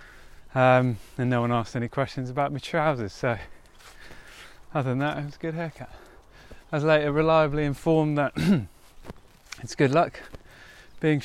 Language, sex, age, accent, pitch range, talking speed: English, male, 20-39, British, 125-155 Hz, 155 wpm